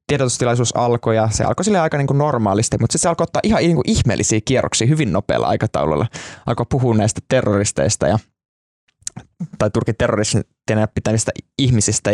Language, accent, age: Finnish, native, 20-39